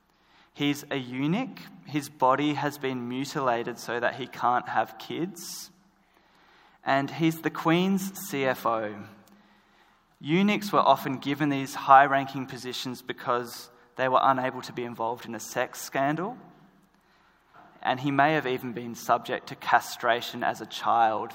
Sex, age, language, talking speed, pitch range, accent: male, 20-39, English, 140 wpm, 120-150 Hz, Australian